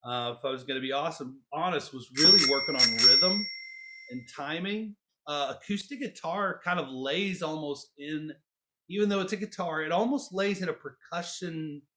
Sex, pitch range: male, 135-170 Hz